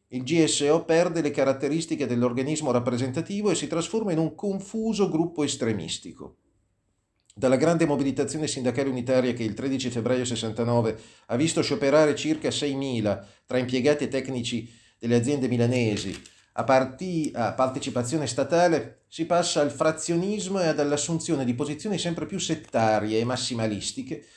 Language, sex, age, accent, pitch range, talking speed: Italian, male, 40-59, native, 110-155 Hz, 135 wpm